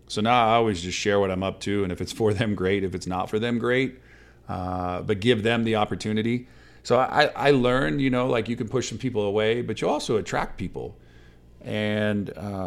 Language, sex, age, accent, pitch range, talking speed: English, male, 40-59, American, 85-110 Hz, 225 wpm